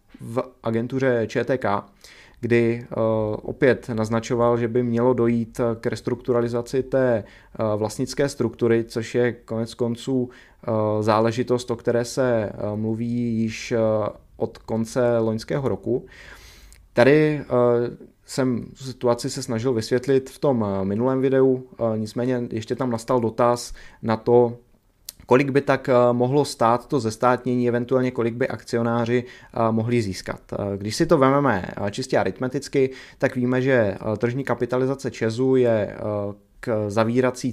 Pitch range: 115-130 Hz